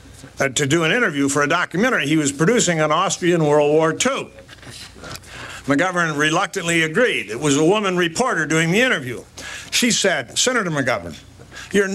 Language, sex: English, male